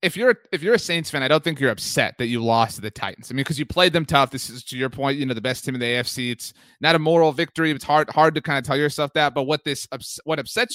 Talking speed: 320 wpm